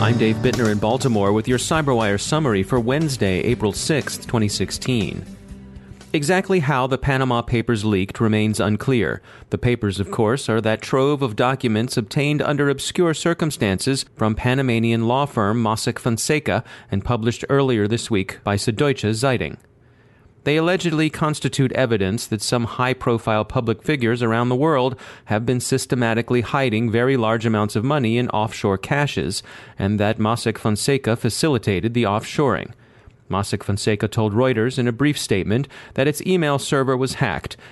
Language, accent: English, American